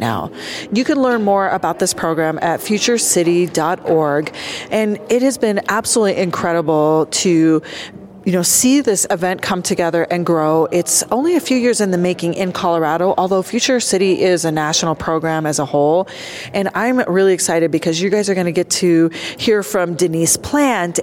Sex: female